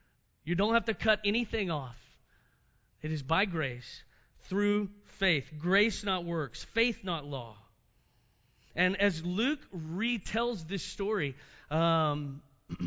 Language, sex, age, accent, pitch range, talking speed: English, male, 30-49, American, 145-195 Hz, 120 wpm